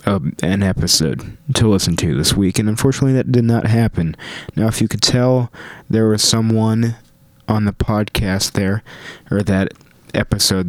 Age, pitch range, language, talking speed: 20-39, 95-115 Hz, English, 155 wpm